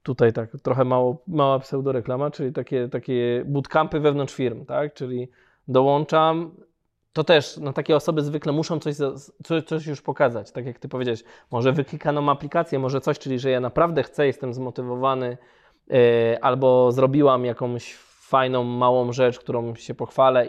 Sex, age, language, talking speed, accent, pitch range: male, 20-39, Polish, 150 wpm, native, 125-150 Hz